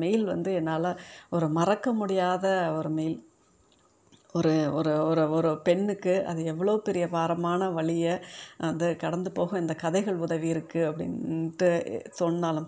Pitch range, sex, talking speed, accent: 165-190 Hz, female, 135 wpm, native